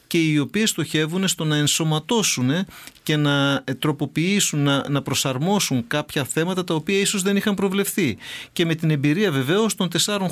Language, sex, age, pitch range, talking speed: English, male, 40-59, 135-180 Hz, 155 wpm